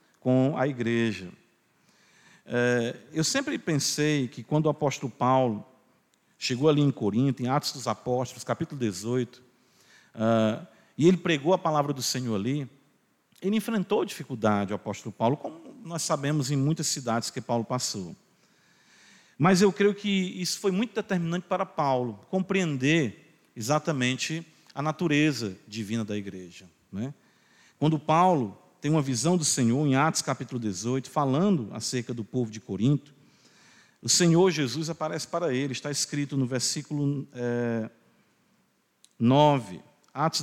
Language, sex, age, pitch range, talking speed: Portuguese, male, 50-69, 120-160 Hz, 135 wpm